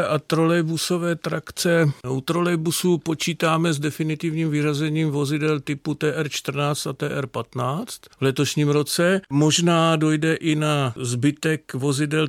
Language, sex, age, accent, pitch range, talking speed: Czech, male, 50-69, native, 125-150 Hz, 110 wpm